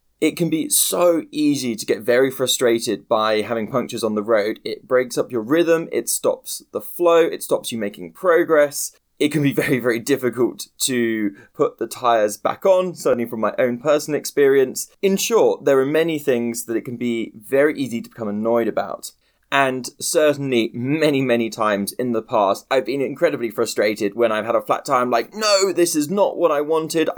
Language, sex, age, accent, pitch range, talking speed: English, male, 20-39, British, 115-160 Hz, 195 wpm